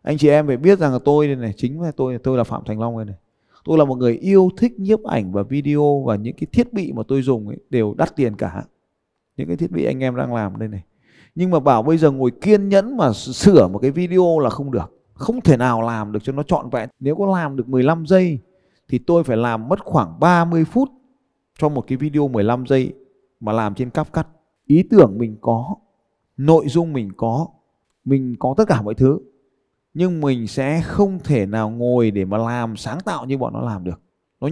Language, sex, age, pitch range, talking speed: Vietnamese, male, 20-39, 125-180 Hz, 235 wpm